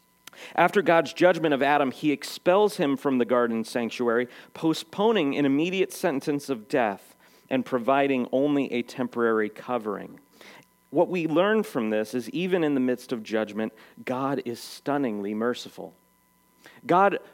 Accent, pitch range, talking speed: American, 115-150 Hz, 140 wpm